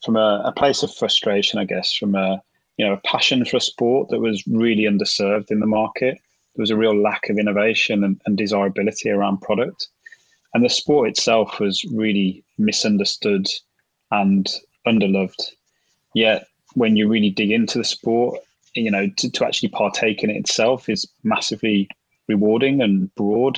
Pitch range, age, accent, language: 100-115 Hz, 20-39, British, English